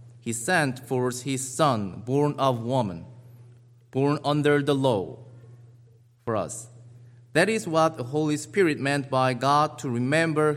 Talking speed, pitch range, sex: 140 wpm, 120-145 Hz, male